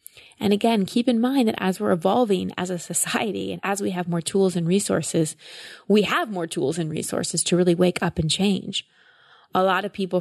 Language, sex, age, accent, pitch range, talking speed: English, female, 20-39, American, 160-195 Hz, 210 wpm